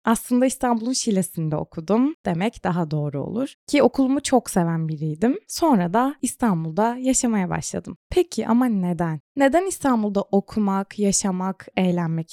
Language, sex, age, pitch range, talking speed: Turkish, female, 20-39, 175-250 Hz, 125 wpm